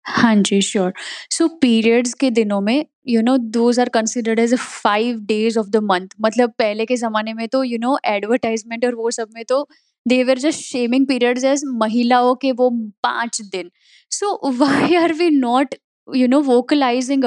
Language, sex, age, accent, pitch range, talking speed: Hindi, female, 10-29, native, 225-280 Hz, 175 wpm